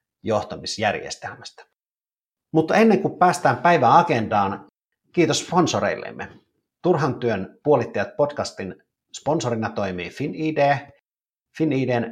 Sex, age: male, 50-69